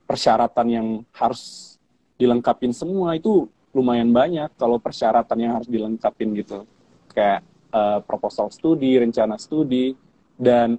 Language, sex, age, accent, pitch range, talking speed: Indonesian, male, 20-39, native, 110-125 Hz, 115 wpm